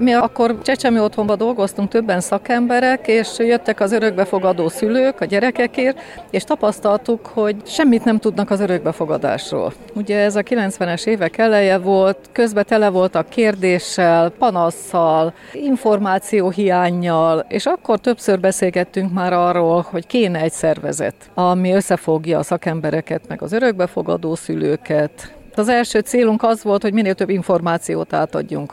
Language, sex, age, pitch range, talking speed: Hungarian, female, 40-59, 170-225 Hz, 130 wpm